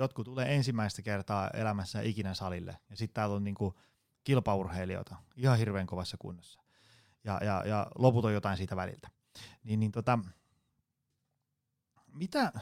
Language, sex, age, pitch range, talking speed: Finnish, male, 30-49, 100-125 Hz, 140 wpm